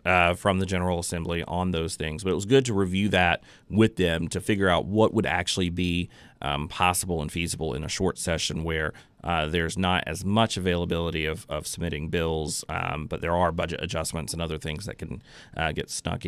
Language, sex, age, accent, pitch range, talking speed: English, male, 30-49, American, 80-95 Hz, 210 wpm